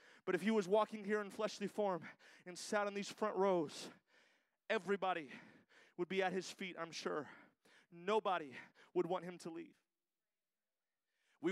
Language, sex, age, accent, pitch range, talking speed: English, male, 30-49, American, 190-260 Hz, 155 wpm